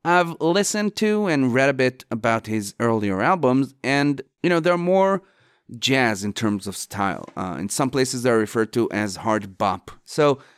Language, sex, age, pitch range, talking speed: English, male, 30-49, 110-145 Hz, 180 wpm